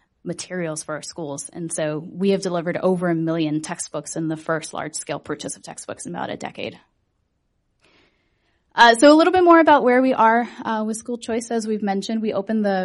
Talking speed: 205 wpm